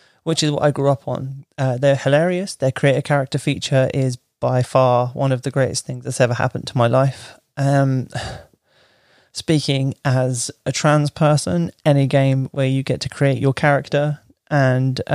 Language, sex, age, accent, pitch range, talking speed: English, male, 20-39, British, 130-150 Hz, 175 wpm